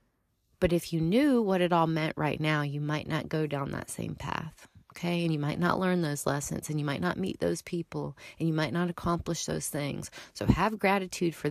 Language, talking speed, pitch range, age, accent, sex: English, 230 wpm, 145-185 Hz, 30-49, American, female